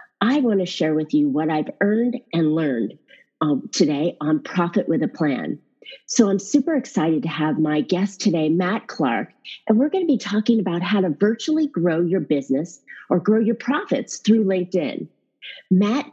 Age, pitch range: 40-59, 165-230 Hz